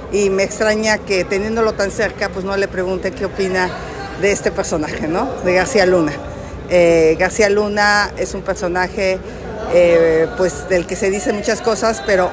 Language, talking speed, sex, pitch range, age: Spanish, 170 wpm, female, 185-225 Hz, 50-69